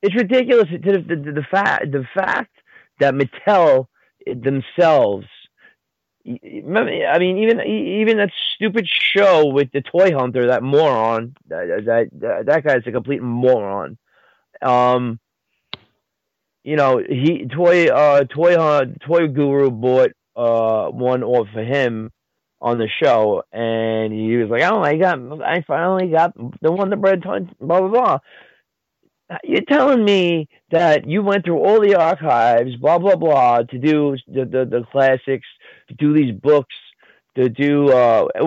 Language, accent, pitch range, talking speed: English, American, 120-170 Hz, 150 wpm